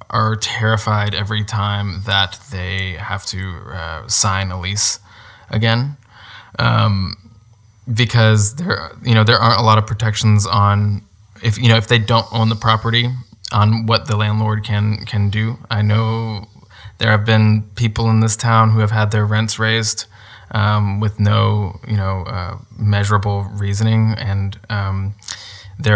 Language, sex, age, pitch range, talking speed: English, male, 20-39, 100-110 Hz, 155 wpm